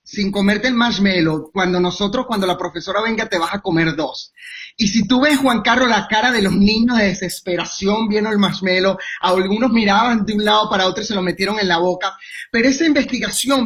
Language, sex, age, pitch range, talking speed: Spanish, male, 30-49, 185-240 Hz, 210 wpm